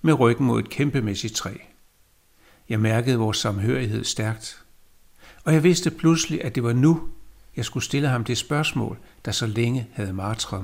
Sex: male